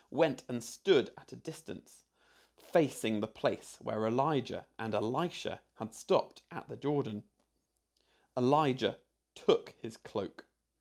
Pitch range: 110-180 Hz